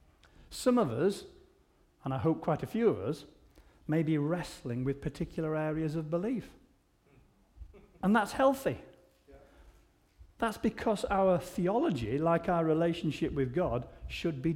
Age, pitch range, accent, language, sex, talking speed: 40-59, 120-170 Hz, British, English, male, 135 wpm